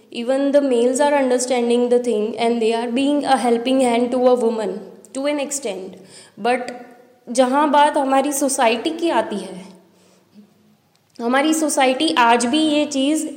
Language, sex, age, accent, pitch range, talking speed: Hindi, female, 20-39, native, 240-290 Hz, 155 wpm